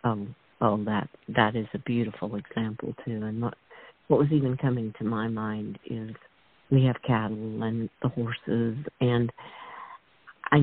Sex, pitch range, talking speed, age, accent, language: female, 120-140 Hz, 155 wpm, 50-69, American, English